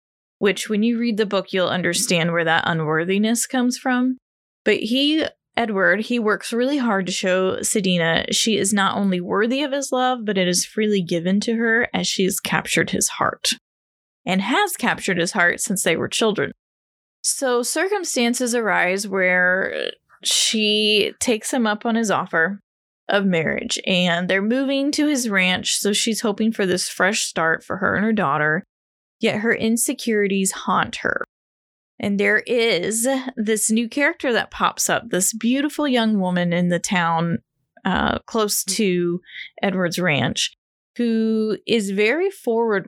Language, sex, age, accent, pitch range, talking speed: English, female, 10-29, American, 185-235 Hz, 160 wpm